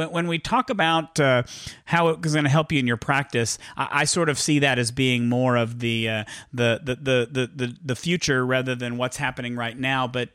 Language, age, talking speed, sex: English, 40-59, 225 wpm, male